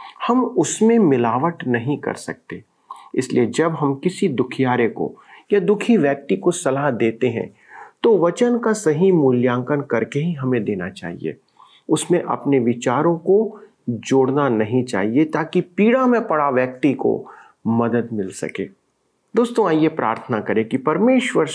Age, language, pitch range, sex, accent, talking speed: 40-59, Hindi, 125-165 Hz, male, native, 140 wpm